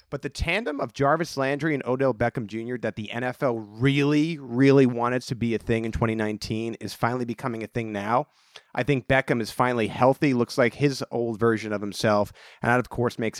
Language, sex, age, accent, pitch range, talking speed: English, male, 30-49, American, 110-135 Hz, 205 wpm